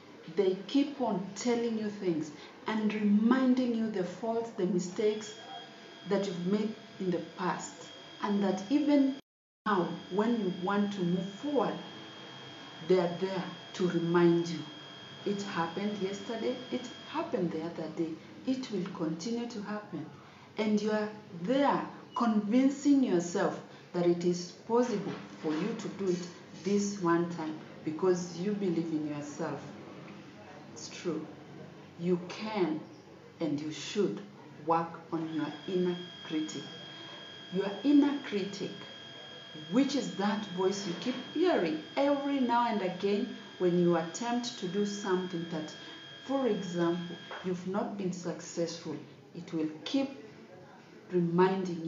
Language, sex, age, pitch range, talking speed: English, female, 40-59, 165-215 Hz, 130 wpm